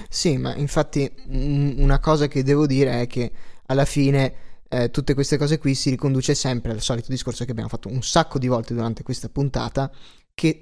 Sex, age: male, 20-39